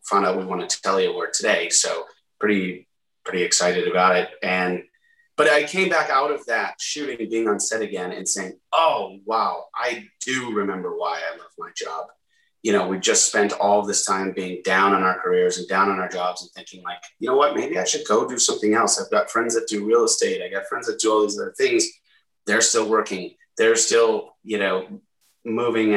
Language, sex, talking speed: English, male, 220 wpm